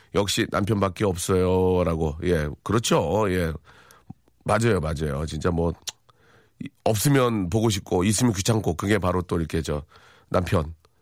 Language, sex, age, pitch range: Korean, male, 40-59, 90-110 Hz